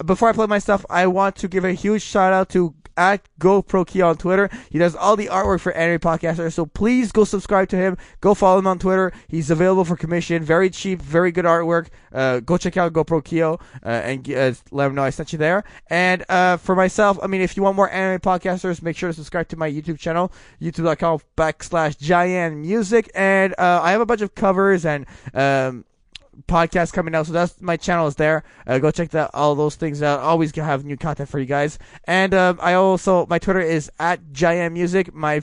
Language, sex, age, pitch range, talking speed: English, male, 20-39, 160-190 Hz, 220 wpm